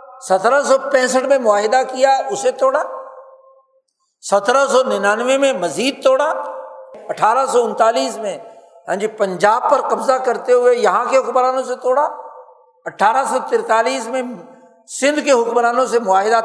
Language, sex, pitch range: Urdu, male, 210-265 Hz